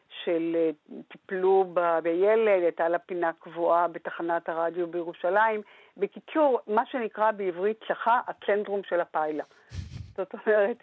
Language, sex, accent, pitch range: Hebrew, female, native, 170-210 Hz